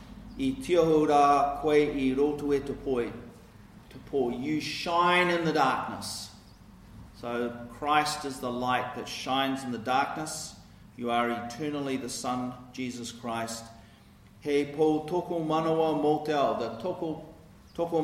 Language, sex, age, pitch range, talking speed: English, male, 40-59, 115-150 Hz, 125 wpm